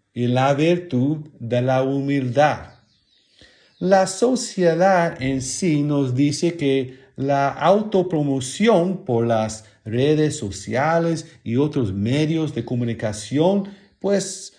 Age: 40-59